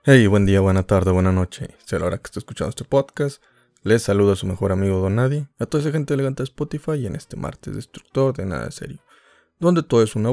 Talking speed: 240 wpm